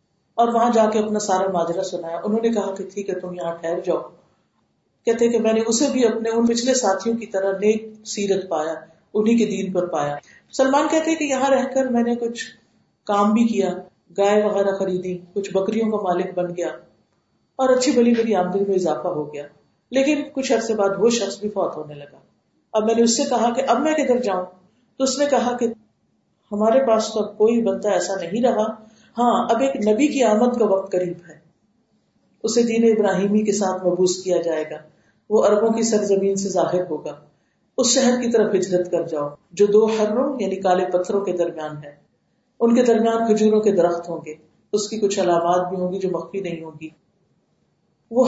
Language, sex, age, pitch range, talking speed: Urdu, female, 50-69, 180-230 Hz, 185 wpm